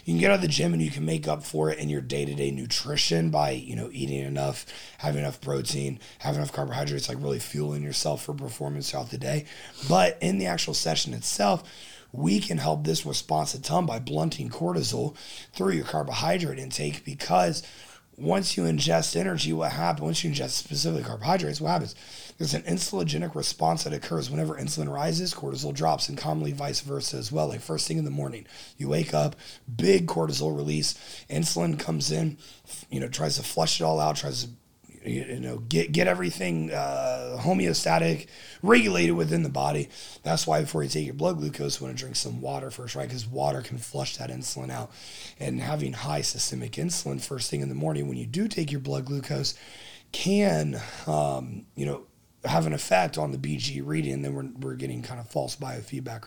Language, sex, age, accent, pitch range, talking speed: English, male, 30-49, American, 70-85 Hz, 195 wpm